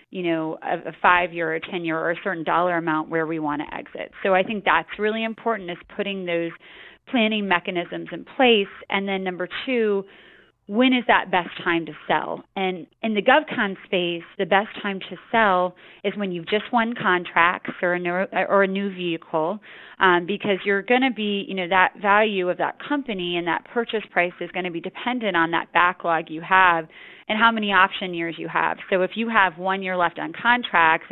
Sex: female